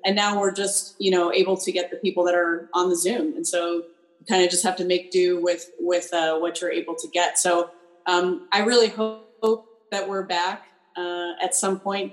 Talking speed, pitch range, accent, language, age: 230 wpm, 170-200 Hz, American, English, 30-49